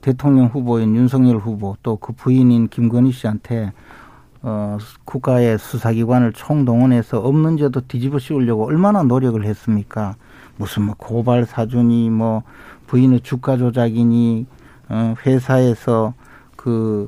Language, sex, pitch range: Korean, male, 115-155 Hz